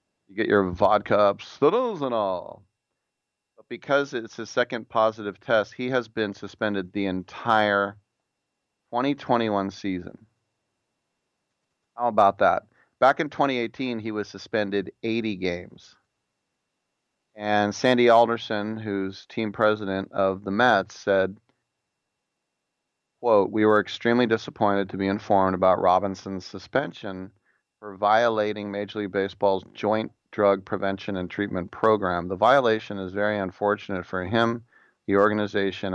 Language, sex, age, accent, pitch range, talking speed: English, male, 30-49, American, 100-110 Hz, 125 wpm